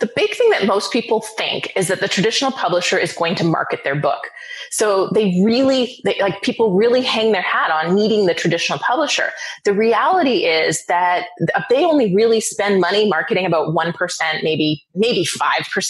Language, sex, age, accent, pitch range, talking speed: English, female, 30-49, American, 175-235 Hz, 175 wpm